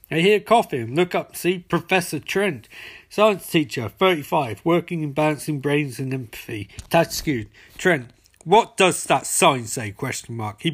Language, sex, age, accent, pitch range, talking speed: English, male, 40-59, British, 110-175 Hz, 160 wpm